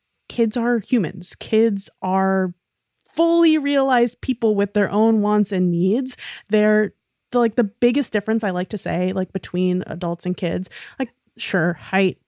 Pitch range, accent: 180-220 Hz, American